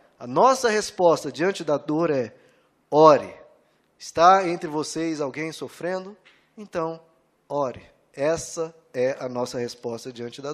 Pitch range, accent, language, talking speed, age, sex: 155-205 Hz, Brazilian, Portuguese, 125 wpm, 20-39, male